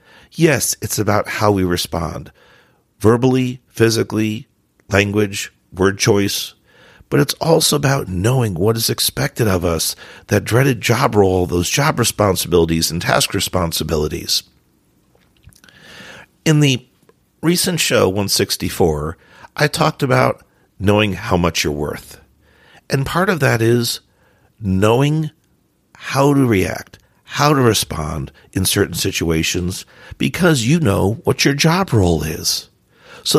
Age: 50-69